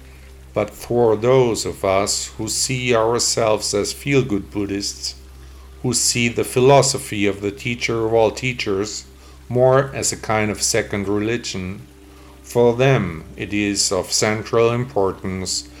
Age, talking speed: 50-69, 135 wpm